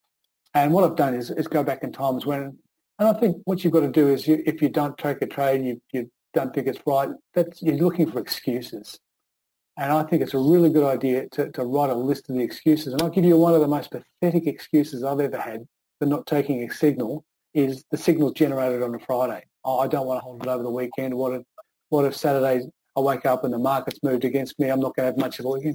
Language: English